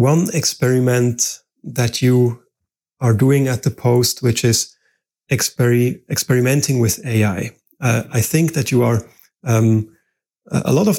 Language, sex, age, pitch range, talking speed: English, male, 30-49, 115-145 Hz, 130 wpm